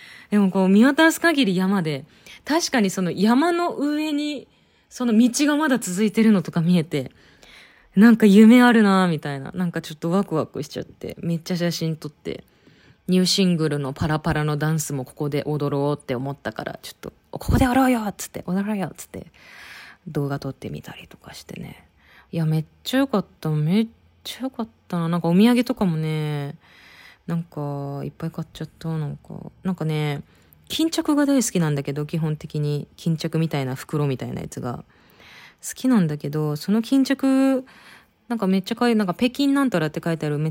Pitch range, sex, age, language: 150-220 Hz, female, 20-39, Japanese